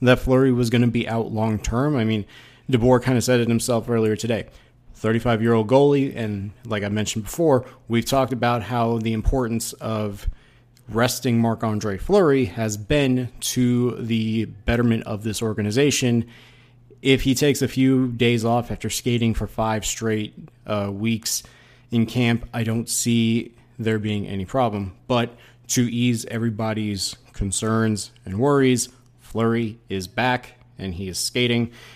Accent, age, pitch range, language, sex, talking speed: American, 20-39, 110-125 Hz, English, male, 160 wpm